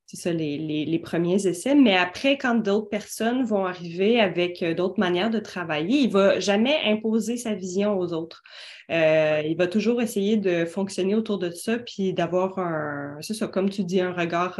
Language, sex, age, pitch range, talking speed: French, female, 20-39, 180-230 Hz, 195 wpm